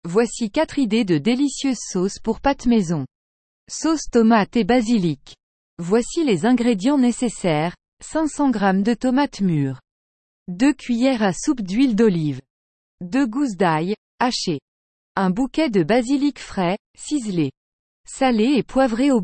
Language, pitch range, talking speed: English, 185-260 Hz, 130 wpm